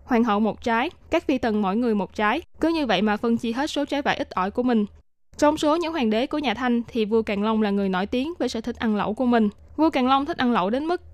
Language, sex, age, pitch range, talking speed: Vietnamese, female, 10-29, 220-275 Hz, 300 wpm